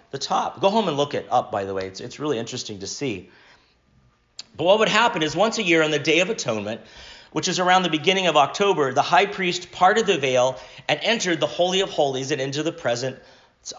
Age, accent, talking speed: 40-59, American, 230 wpm